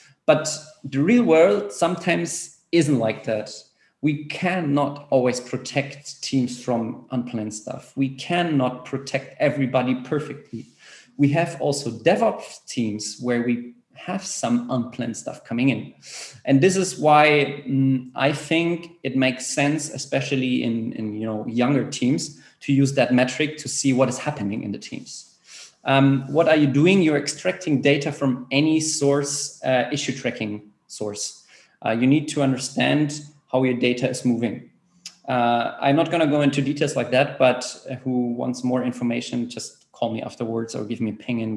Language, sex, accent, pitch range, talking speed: English, male, German, 120-150 Hz, 155 wpm